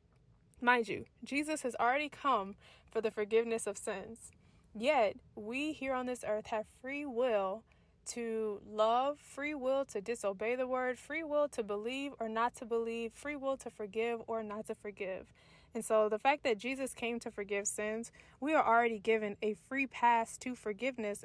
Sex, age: female, 20-39